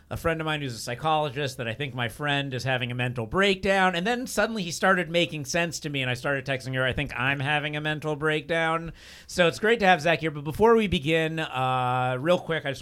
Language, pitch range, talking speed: English, 115-155 Hz, 255 wpm